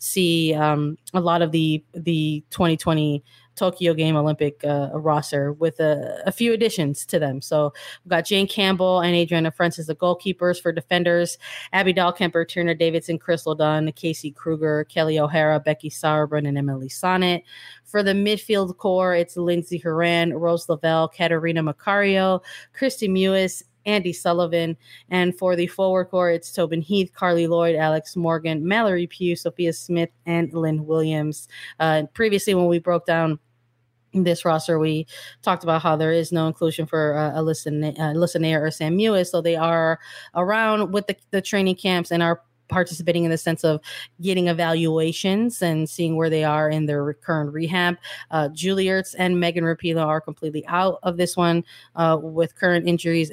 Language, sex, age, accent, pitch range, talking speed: English, female, 20-39, American, 155-180 Hz, 170 wpm